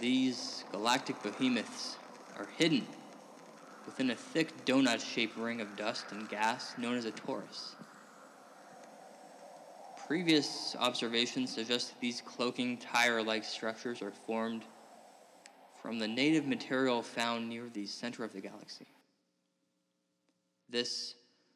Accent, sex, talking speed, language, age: American, male, 110 wpm, English, 20-39